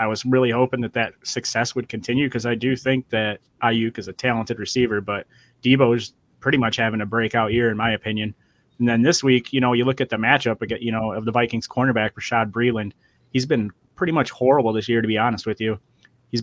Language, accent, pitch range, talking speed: English, American, 110-125 Hz, 230 wpm